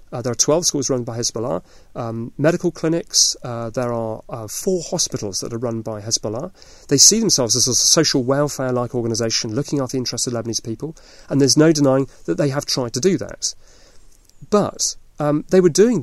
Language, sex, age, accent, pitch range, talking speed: English, male, 40-59, British, 115-150 Hz, 200 wpm